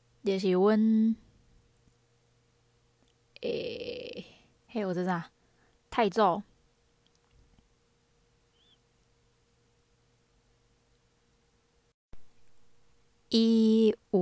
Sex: female